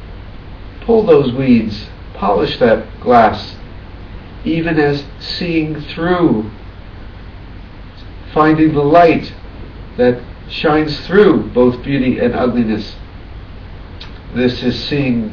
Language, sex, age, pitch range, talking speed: English, male, 50-69, 95-135 Hz, 90 wpm